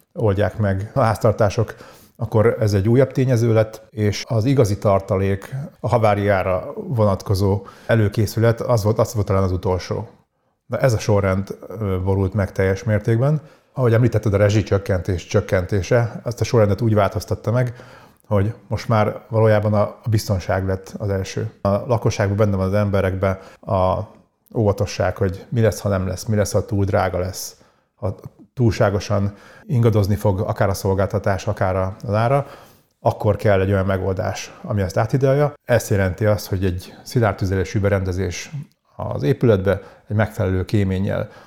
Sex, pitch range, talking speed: male, 100-115 Hz, 150 wpm